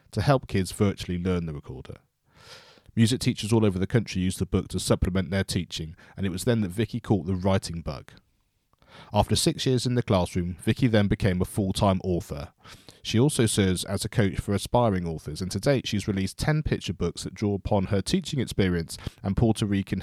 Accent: British